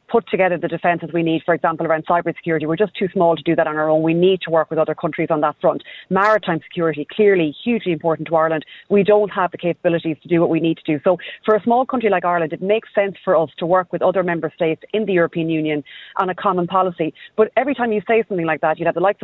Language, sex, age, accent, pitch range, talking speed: English, female, 30-49, Irish, 165-205 Hz, 275 wpm